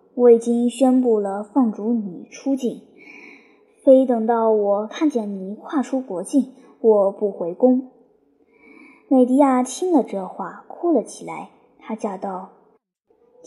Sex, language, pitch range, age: male, Chinese, 220-285 Hz, 20-39